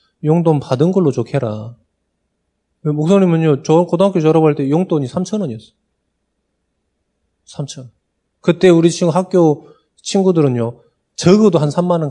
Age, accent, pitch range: 20-39, native, 125-180 Hz